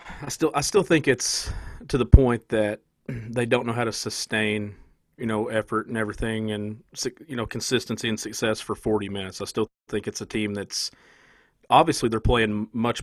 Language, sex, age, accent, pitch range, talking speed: English, male, 40-59, American, 105-125 Hz, 190 wpm